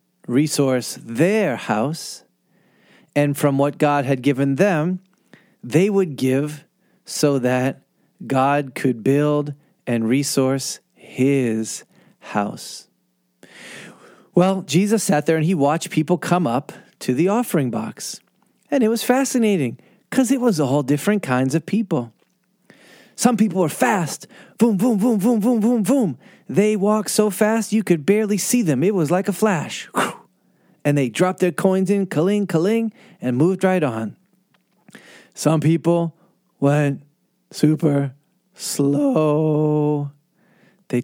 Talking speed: 135 wpm